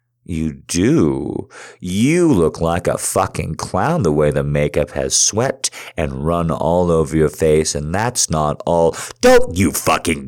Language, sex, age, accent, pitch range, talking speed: English, male, 50-69, American, 75-120 Hz, 160 wpm